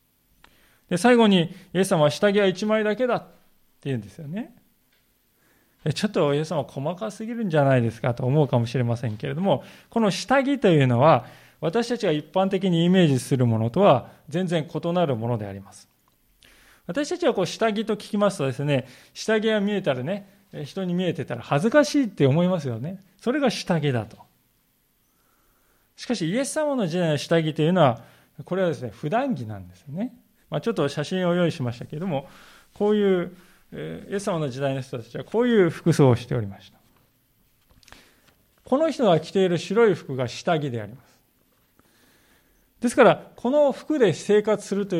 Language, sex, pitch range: Japanese, male, 135-210 Hz